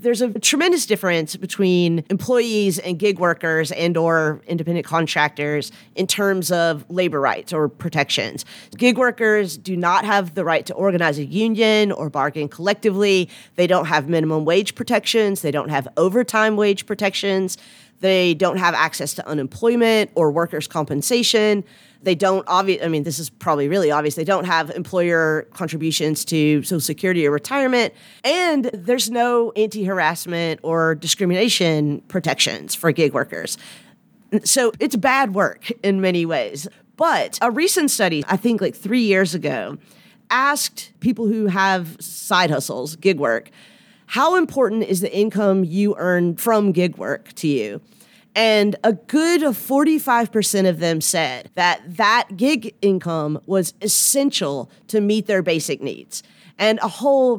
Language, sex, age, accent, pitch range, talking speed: English, female, 30-49, American, 165-220 Hz, 150 wpm